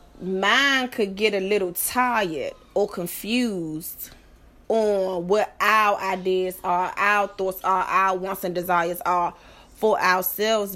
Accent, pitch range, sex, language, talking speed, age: American, 180-220 Hz, female, English, 130 wpm, 20-39